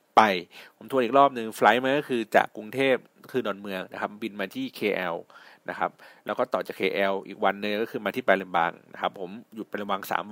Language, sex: Thai, male